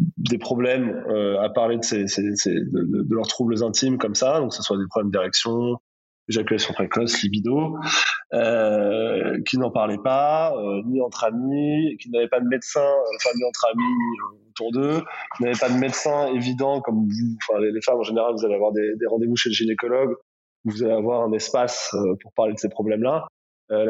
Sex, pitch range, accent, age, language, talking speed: male, 105-130 Hz, French, 20-39, French, 210 wpm